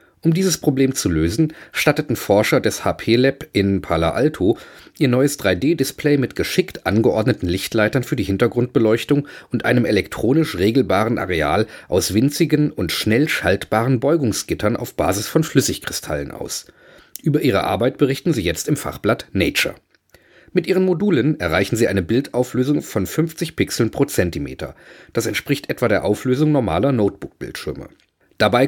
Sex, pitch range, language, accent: male, 105-150 Hz, German, German